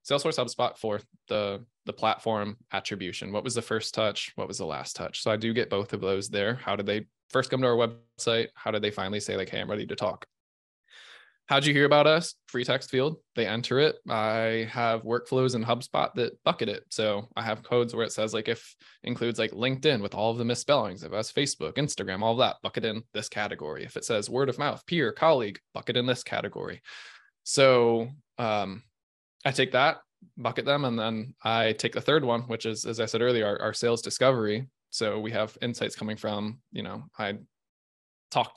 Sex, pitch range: male, 110-125 Hz